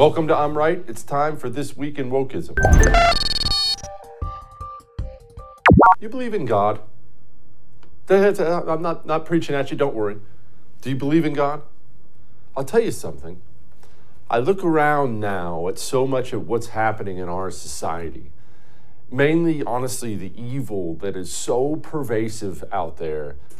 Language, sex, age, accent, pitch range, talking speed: English, male, 50-69, American, 100-150 Hz, 140 wpm